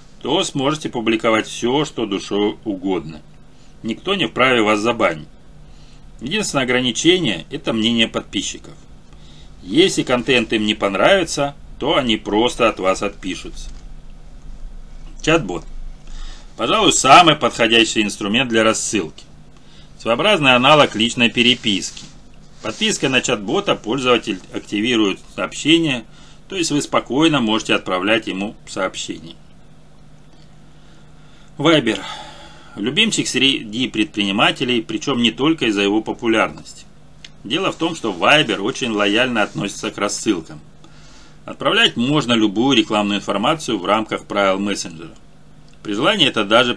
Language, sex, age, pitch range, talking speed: Russian, male, 40-59, 105-135 Hz, 110 wpm